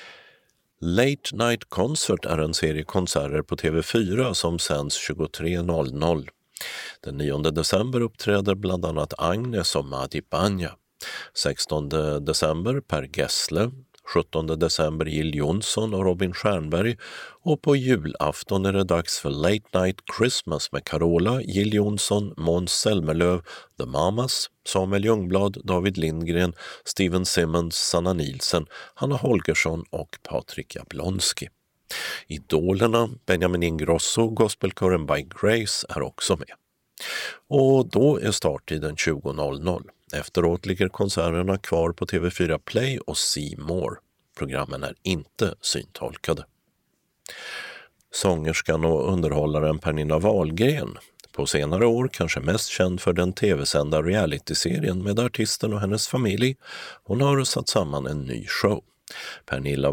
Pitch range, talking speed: 80-105 Hz, 120 wpm